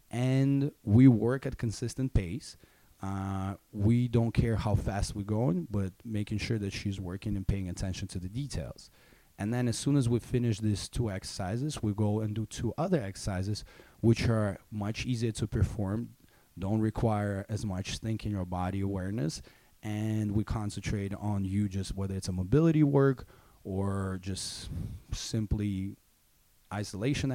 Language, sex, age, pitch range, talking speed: English, male, 20-39, 100-120 Hz, 160 wpm